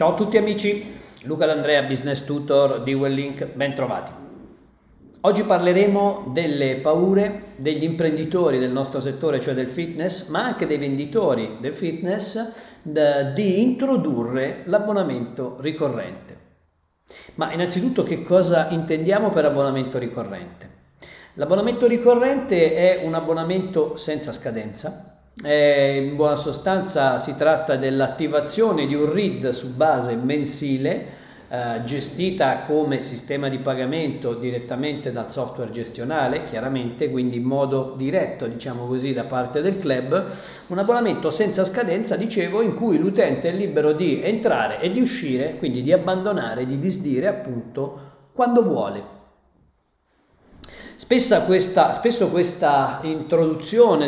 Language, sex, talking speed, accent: Italian, male, 120 wpm, native